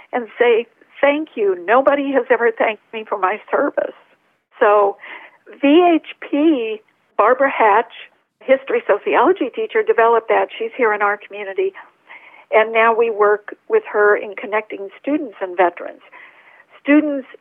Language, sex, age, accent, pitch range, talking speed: English, female, 50-69, American, 205-325 Hz, 130 wpm